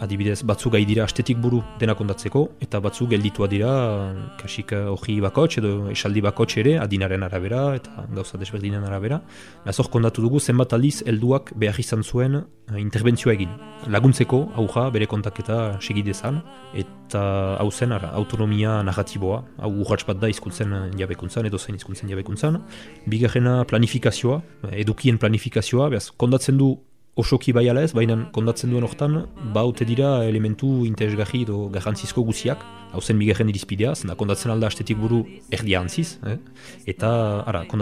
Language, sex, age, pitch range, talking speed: French, male, 20-39, 105-120 Hz, 125 wpm